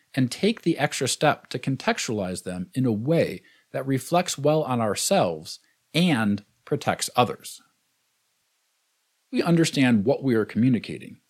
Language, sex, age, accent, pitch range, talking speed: English, male, 50-69, American, 125-170 Hz, 135 wpm